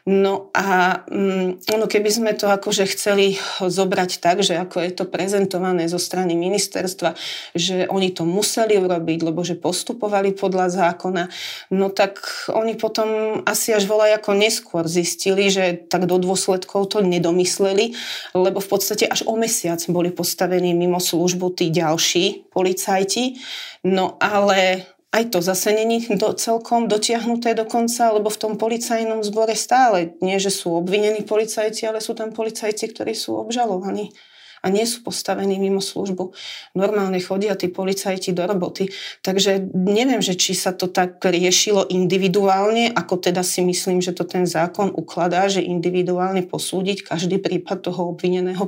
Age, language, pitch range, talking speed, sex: 30-49, Slovak, 180-210 Hz, 150 wpm, female